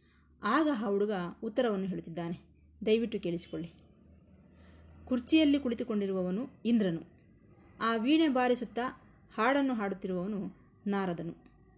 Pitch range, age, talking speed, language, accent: 185-255 Hz, 20-39, 80 wpm, Kannada, native